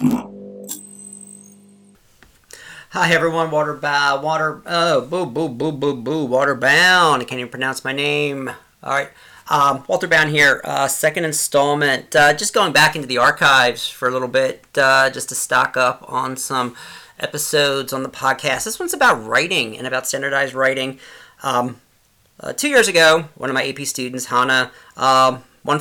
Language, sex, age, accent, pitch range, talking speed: English, male, 40-59, American, 130-175 Hz, 165 wpm